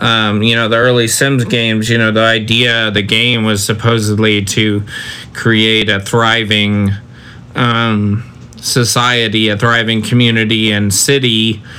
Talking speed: 140 wpm